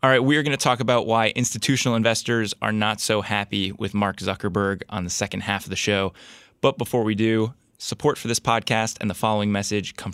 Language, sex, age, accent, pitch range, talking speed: English, male, 20-39, American, 100-115 Hz, 220 wpm